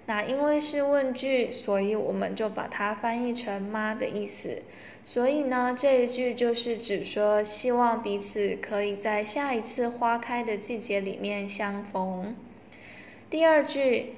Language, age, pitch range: Vietnamese, 10-29, 210-255 Hz